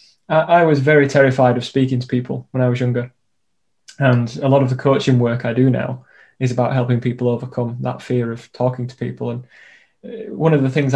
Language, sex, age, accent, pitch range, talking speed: English, male, 20-39, British, 125-135 Hz, 210 wpm